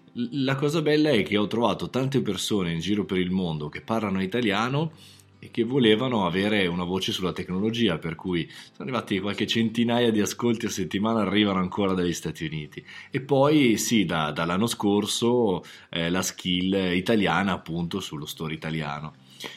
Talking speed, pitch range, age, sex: 165 wpm, 90-120 Hz, 20-39, male